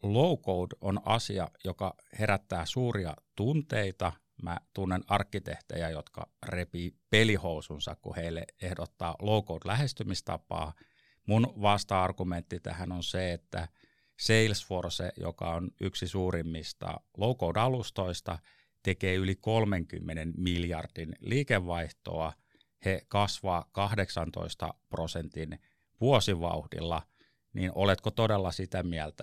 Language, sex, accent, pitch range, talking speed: Finnish, male, native, 85-110 Hz, 90 wpm